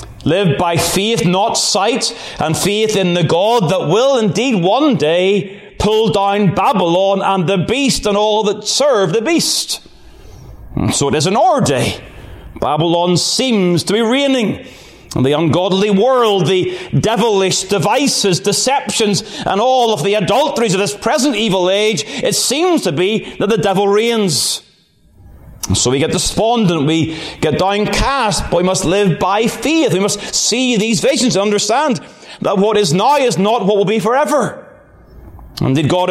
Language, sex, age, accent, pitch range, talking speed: English, male, 30-49, British, 160-215 Hz, 160 wpm